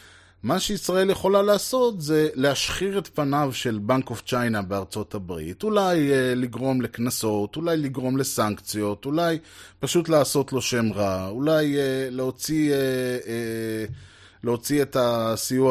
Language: Hebrew